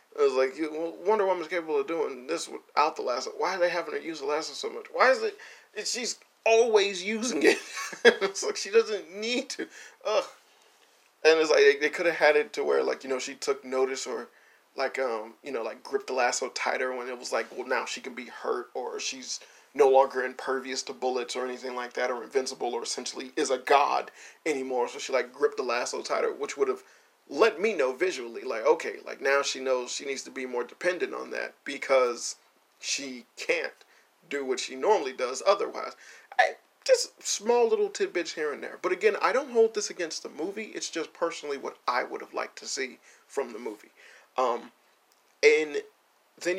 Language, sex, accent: English, male, American